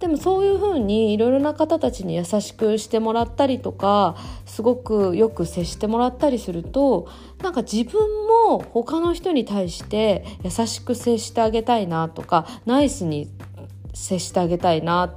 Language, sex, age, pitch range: Japanese, female, 20-39, 165-255 Hz